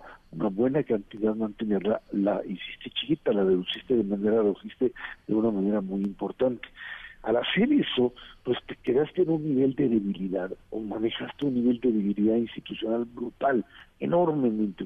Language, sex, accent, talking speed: Spanish, male, Mexican, 145 wpm